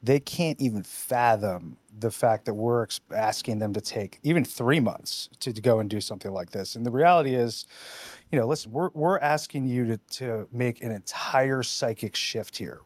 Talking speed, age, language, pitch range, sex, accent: 190 wpm, 30-49, English, 115-140 Hz, male, American